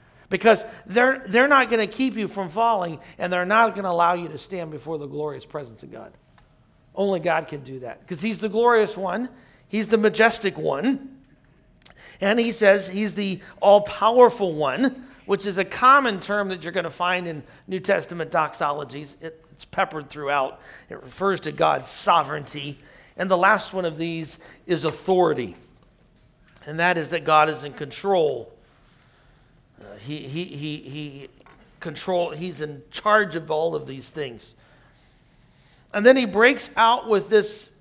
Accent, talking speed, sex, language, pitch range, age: American, 165 wpm, male, English, 160-225 Hz, 40-59